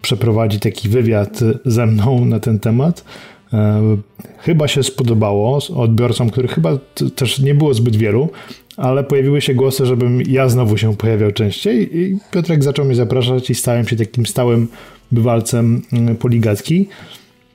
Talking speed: 145 wpm